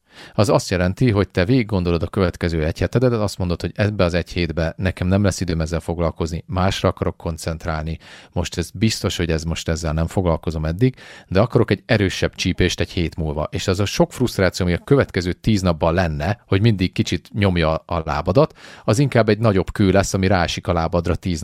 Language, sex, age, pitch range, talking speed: Hungarian, male, 40-59, 85-110 Hz, 205 wpm